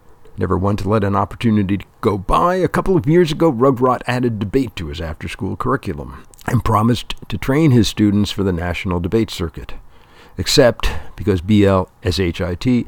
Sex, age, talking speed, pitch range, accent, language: male, 60-79, 160 wpm, 90-120 Hz, American, English